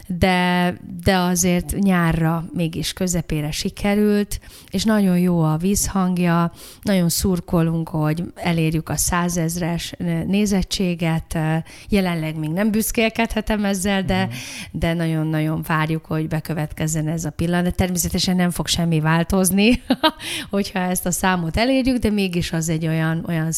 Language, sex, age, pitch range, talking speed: Hungarian, female, 30-49, 160-195 Hz, 125 wpm